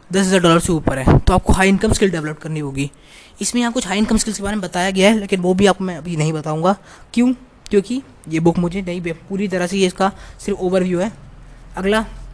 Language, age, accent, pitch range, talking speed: Hindi, 20-39, native, 160-205 Hz, 240 wpm